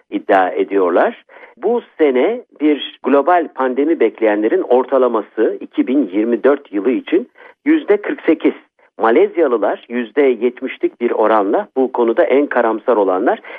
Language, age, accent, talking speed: Turkish, 50-69, native, 105 wpm